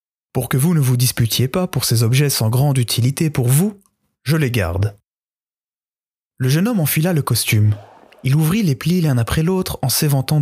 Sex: male